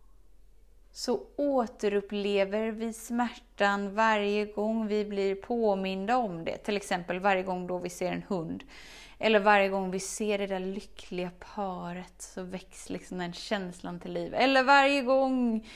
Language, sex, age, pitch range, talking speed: Swedish, female, 20-39, 185-240 Hz, 145 wpm